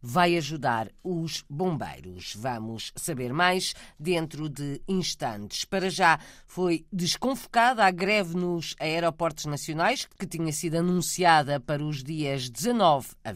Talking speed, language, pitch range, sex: 125 wpm, Portuguese, 145-195 Hz, female